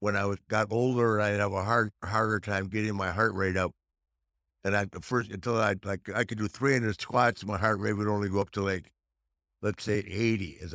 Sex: male